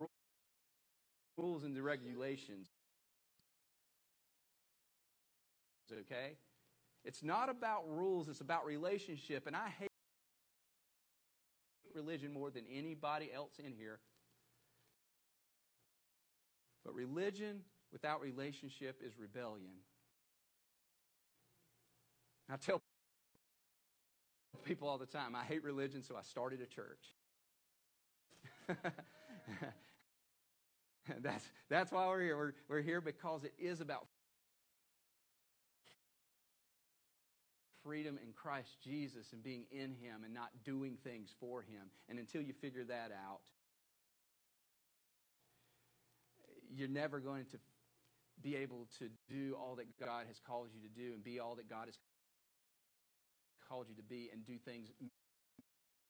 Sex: male